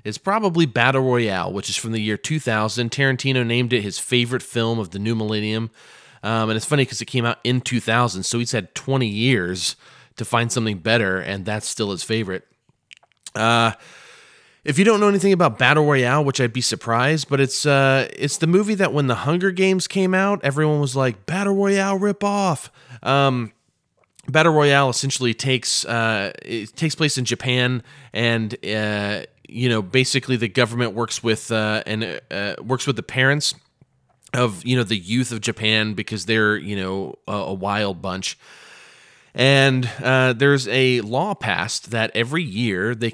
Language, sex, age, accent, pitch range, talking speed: English, male, 20-39, American, 110-140 Hz, 180 wpm